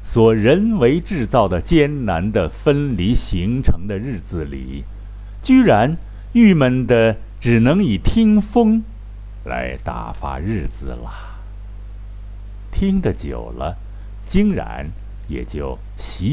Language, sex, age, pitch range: Chinese, male, 60-79, 100-125 Hz